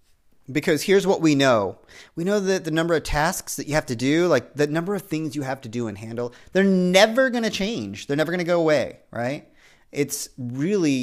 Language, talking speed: English, 230 wpm